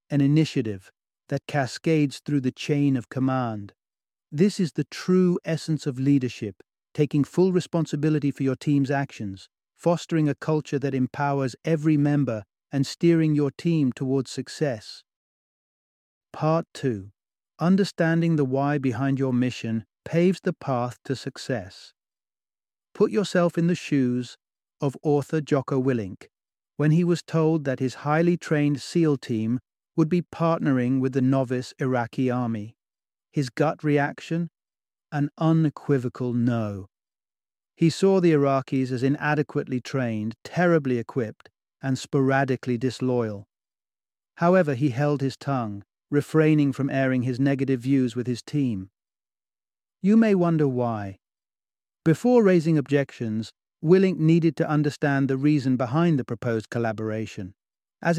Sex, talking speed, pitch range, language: male, 130 wpm, 125-160 Hz, English